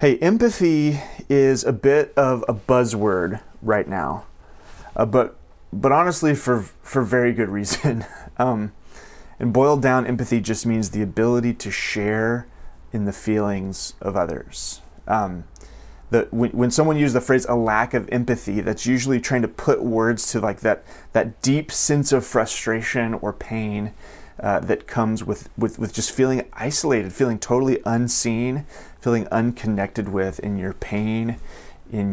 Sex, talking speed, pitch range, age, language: male, 155 wpm, 100-130 Hz, 30-49, English